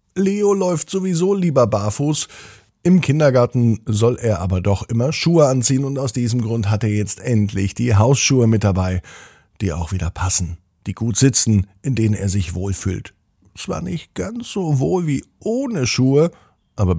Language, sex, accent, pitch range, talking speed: German, male, German, 95-130 Hz, 165 wpm